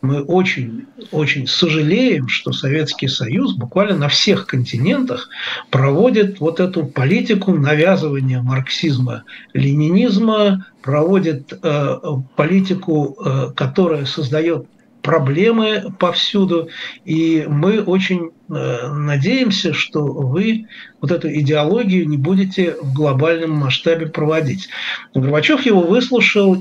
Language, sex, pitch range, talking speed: Russian, male, 145-195 Hz, 90 wpm